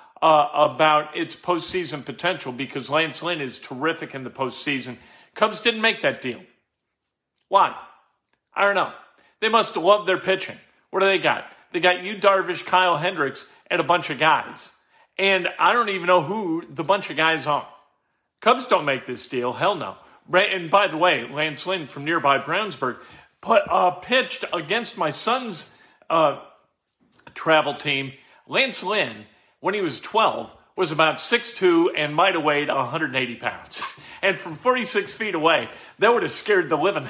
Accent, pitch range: American, 150-190 Hz